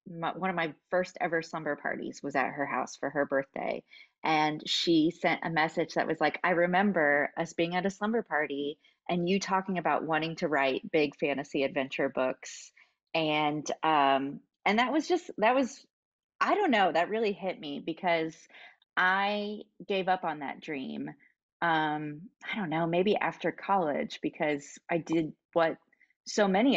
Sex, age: female, 30-49